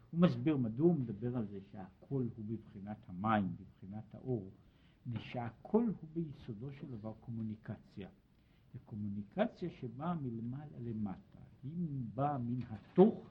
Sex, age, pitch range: male, 60-79, 120-175 Hz